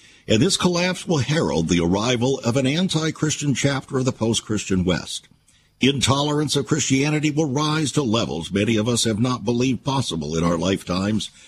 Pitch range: 110-150 Hz